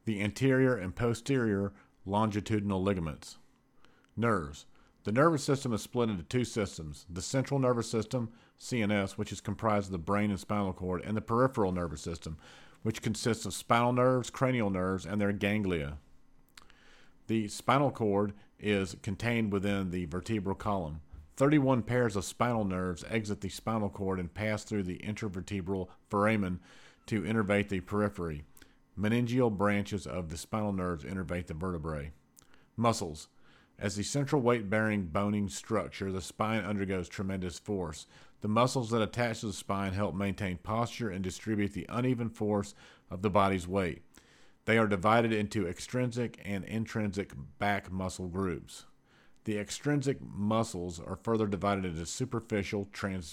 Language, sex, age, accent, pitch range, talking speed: English, male, 40-59, American, 95-115 Hz, 145 wpm